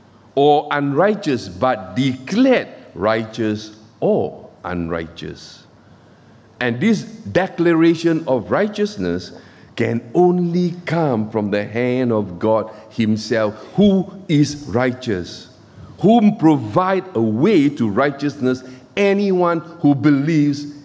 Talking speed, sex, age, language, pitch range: 95 wpm, male, 50-69, English, 110-185 Hz